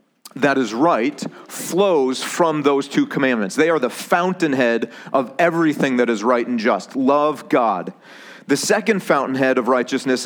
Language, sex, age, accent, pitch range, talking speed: English, male, 40-59, American, 130-180 Hz, 150 wpm